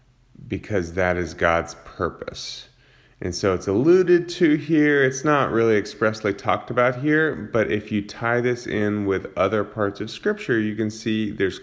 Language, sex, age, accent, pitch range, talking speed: English, male, 30-49, American, 85-110 Hz, 170 wpm